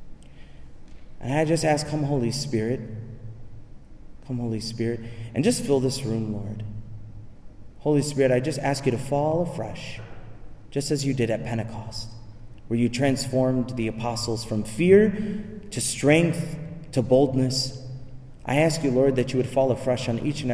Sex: male